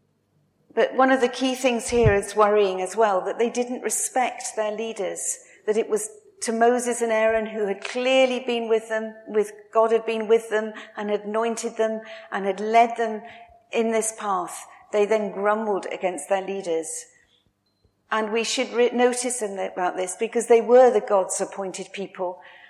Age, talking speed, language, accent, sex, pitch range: 40-59, 175 wpm, English, British, female, 200-245 Hz